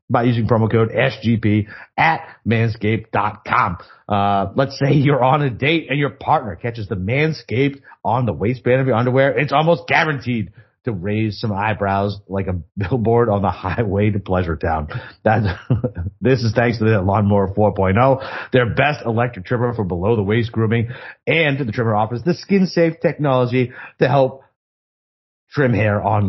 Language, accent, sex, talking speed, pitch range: English, American, male, 160 wpm, 100-130 Hz